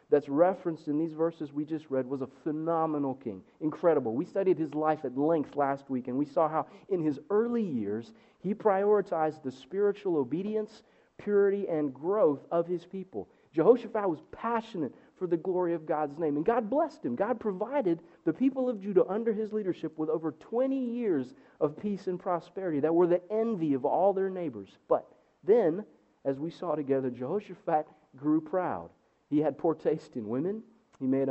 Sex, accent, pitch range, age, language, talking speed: male, American, 150-210 Hz, 40-59, English, 180 wpm